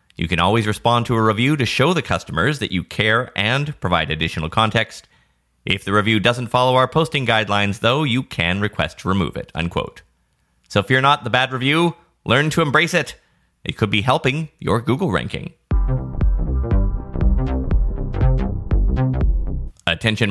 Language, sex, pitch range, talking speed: English, male, 85-125 Hz, 155 wpm